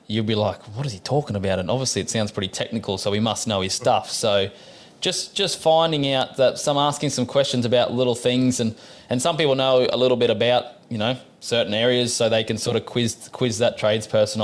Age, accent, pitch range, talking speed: 20-39, Australian, 105-120 Hz, 230 wpm